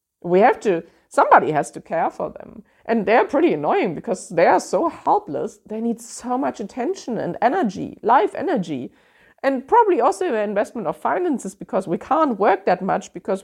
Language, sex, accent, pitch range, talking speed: English, female, German, 180-275 Hz, 185 wpm